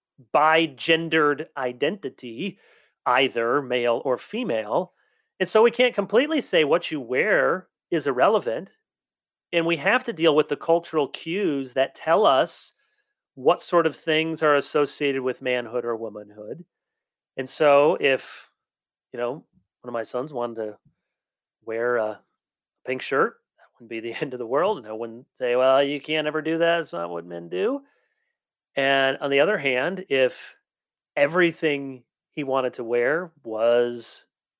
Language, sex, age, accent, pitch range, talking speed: English, male, 30-49, American, 125-175 Hz, 155 wpm